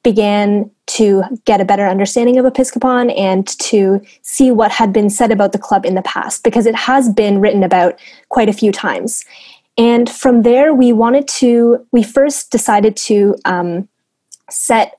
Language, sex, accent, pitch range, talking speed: English, female, American, 195-235 Hz, 170 wpm